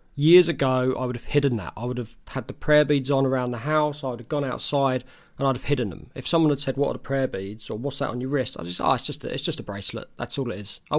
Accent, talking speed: British, 310 wpm